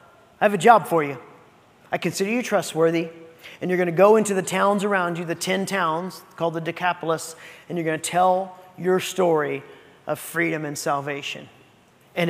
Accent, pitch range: American, 170-230 Hz